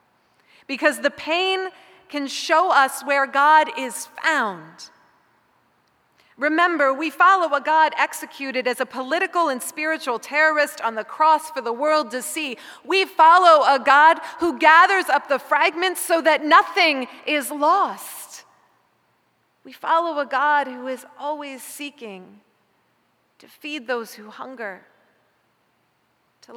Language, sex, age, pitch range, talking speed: English, female, 40-59, 220-300 Hz, 130 wpm